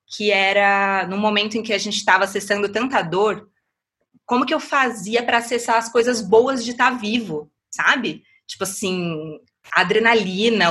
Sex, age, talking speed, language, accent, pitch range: female, 20-39, 165 wpm, Portuguese, Brazilian, 170-210 Hz